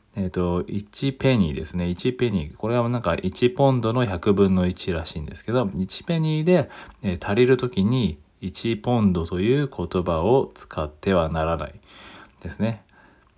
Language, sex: Japanese, male